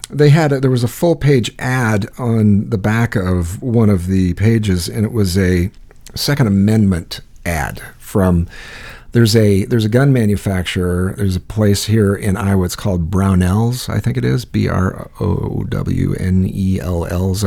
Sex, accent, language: male, American, English